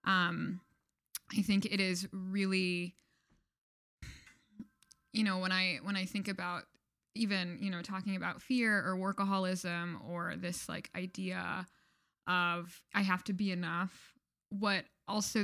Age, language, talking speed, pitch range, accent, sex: 10-29, English, 130 wpm, 185-210 Hz, American, female